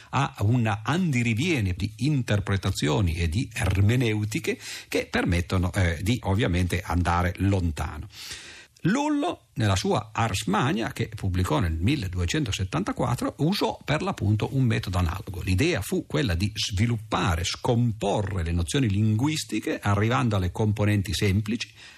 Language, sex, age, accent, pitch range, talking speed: Italian, male, 50-69, native, 95-140 Hz, 115 wpm